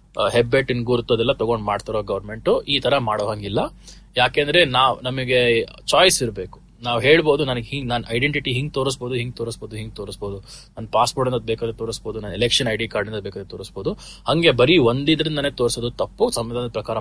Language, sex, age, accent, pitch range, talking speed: Kannada, male, 20-39, native, 120-150 Hz, 160 wpm